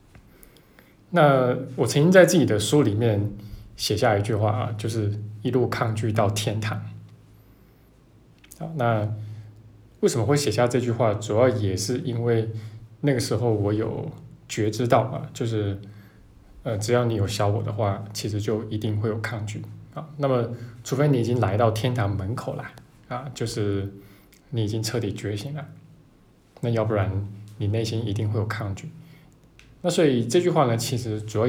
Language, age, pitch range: Chinese, 20-39, 105-130 Hz